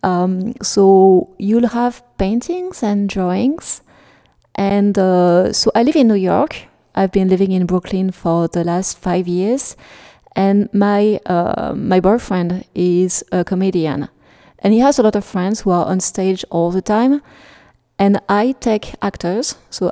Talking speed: 155 wpm